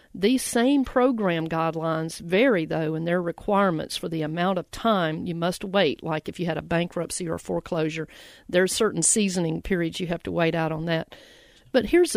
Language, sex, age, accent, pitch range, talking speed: English, female, 50-69, American, 170-220 Hz, 190 wpm